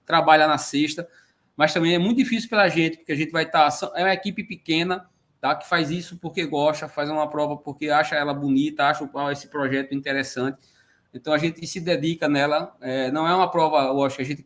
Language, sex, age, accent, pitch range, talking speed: Portuguese, male, 20-39, Brazilian, 140-170 Hz, 205 wpm